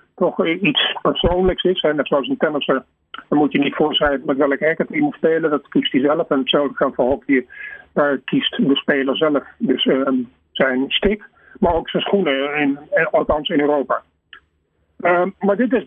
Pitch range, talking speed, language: 140-185 Hz, 190 wpm, Dutch